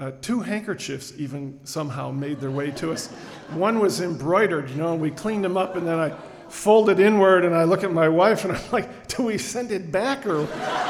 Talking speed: 220 wpm